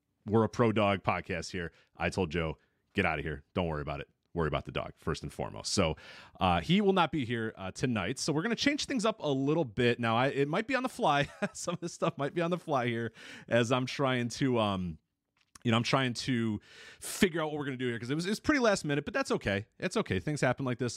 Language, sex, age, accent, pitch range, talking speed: English, male, 30-49, American, 105-140 Hz, 275 wpm